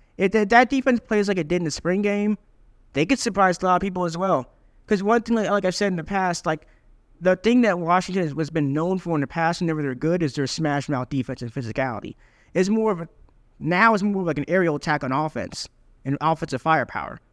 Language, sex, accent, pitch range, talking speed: English, male, American, 140-195 Hz, 230 wpm